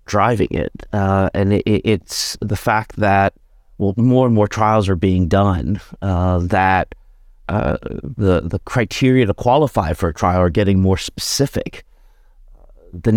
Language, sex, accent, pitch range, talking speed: English, male, American, 95-115 Hz, 145 wpm